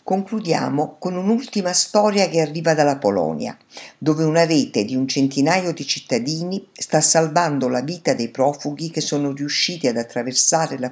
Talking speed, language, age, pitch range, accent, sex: 155 wpm, Italian, 50-69, 135-175 Hz, native, female